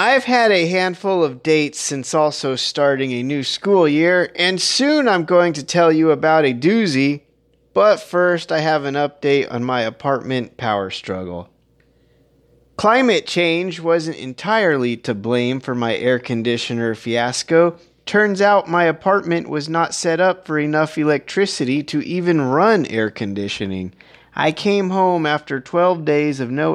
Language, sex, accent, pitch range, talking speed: English, male, American, 120-170 Hz, 155 wpm